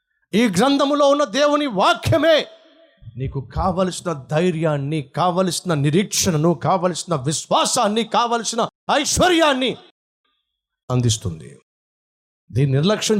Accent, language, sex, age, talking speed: native, Telugu, male, 50-69, 55 wpm